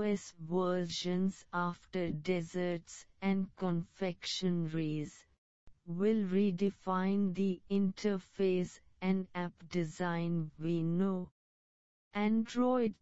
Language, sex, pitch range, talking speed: English, female, 170-190 Hz, 70 wpm